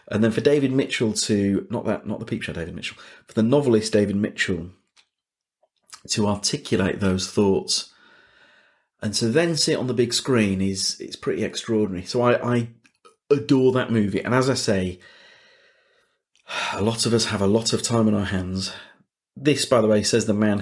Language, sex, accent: English, male, British